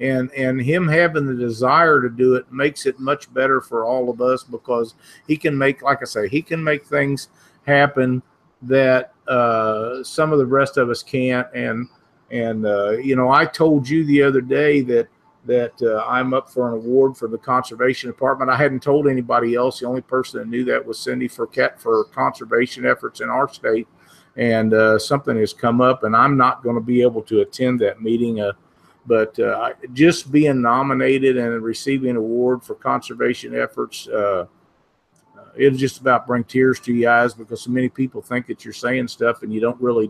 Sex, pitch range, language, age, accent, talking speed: male, 115-135 Hz, English, 50-69, American, 200 wpm